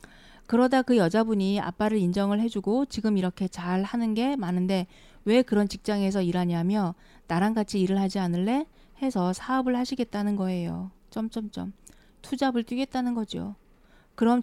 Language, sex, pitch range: Korean, female, 185-225 Hz